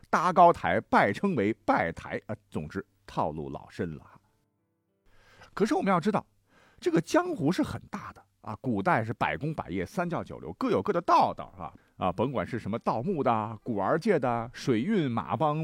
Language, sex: Chinese, male